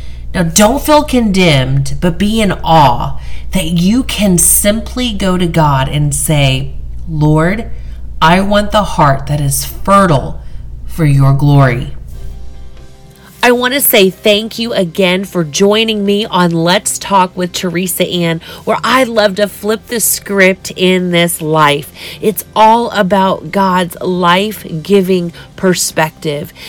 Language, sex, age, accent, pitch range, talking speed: English, female, 40-59, American, 155-215 Hz, 135 wpm